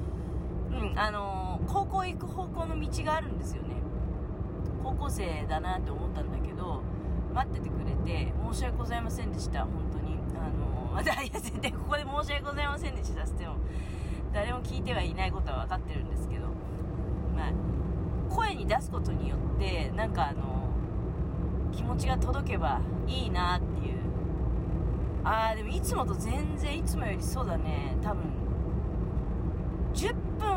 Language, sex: Japanese, female